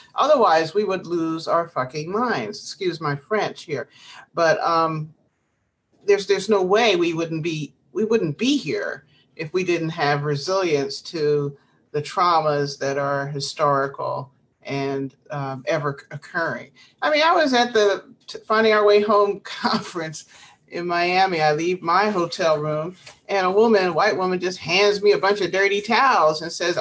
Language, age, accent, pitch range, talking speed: English, 40-59, American, 150-210 Hz, 165 wpm